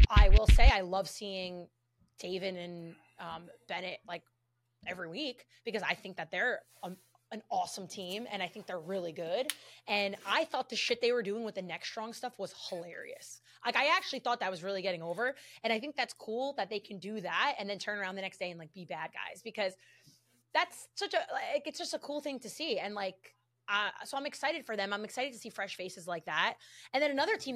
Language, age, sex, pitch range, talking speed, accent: English, 20-39, female, 180-250 Hz, 225 wpm, American